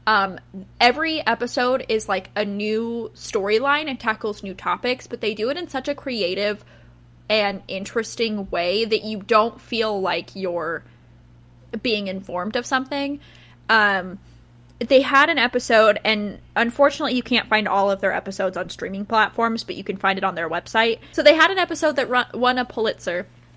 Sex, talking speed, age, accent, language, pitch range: female, 170 wpm, 20-39, American, English, 180-250 Hz